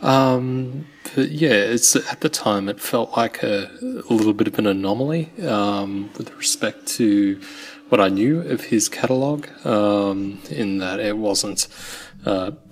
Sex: male